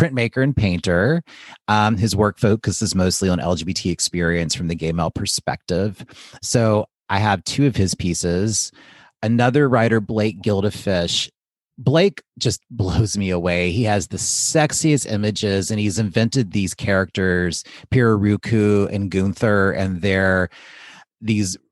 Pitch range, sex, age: 95-115 Hz, male, 30-49